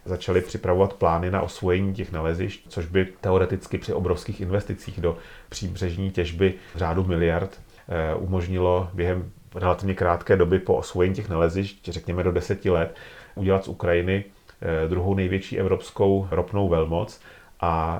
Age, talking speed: 40-59, 135 wpm